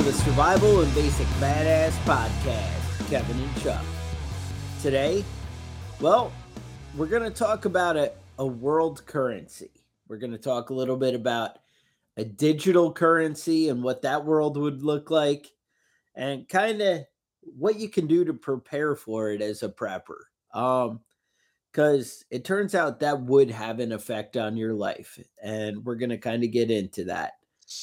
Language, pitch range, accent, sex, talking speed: English, 115-150 Hz, American, male, 160 wpm